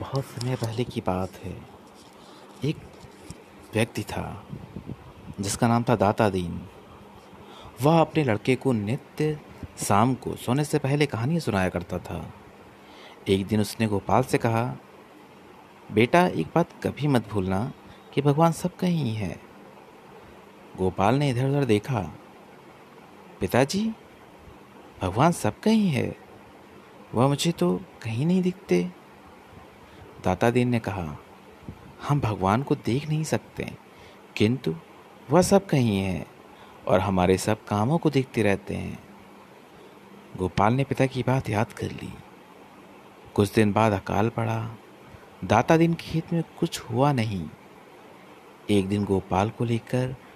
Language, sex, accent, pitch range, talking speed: Hindi, male, native, 100-140 Hz, 130 wpm